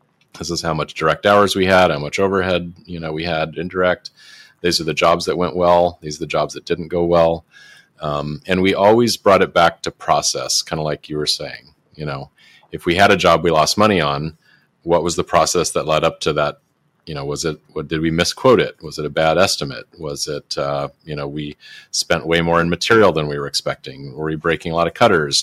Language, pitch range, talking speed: English, 75-85 Hz, 240 wpm